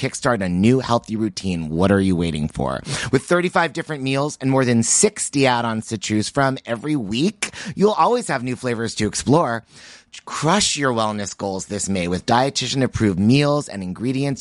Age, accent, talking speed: 30-49, American, 180 wpm